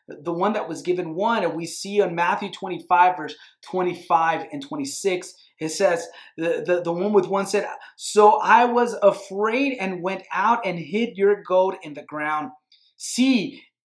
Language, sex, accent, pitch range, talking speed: English, male, American, 165-220 Hz, 175 wpm